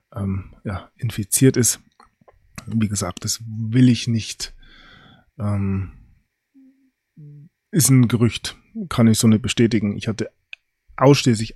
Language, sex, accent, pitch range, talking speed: German, male, German, 100-125 Hz, 115 wpm